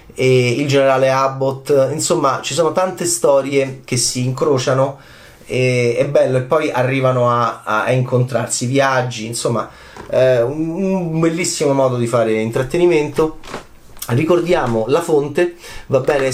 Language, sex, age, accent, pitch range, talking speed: Italian, male, 30-49, native, 120-155 Hz, 125 wpm